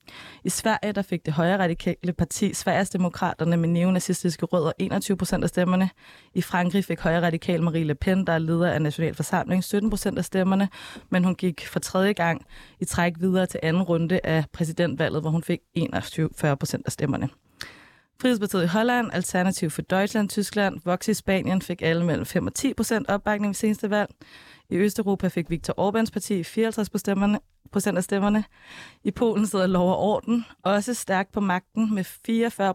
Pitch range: 170-200 Hz